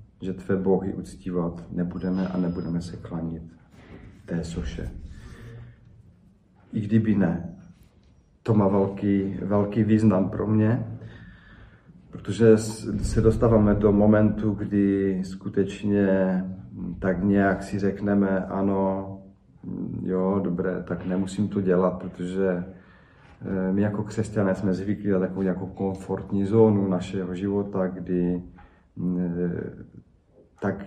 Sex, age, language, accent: male, 40-59, Czech, native